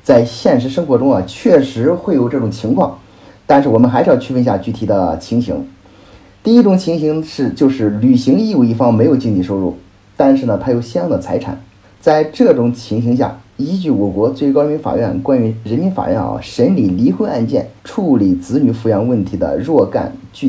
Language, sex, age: Chinese, male, 30-49